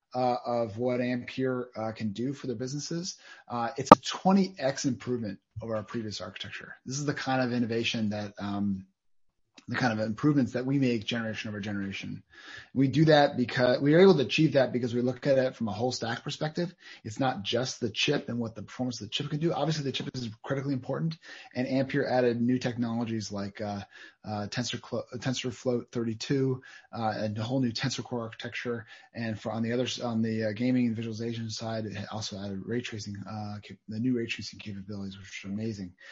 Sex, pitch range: male, 110-135 Hz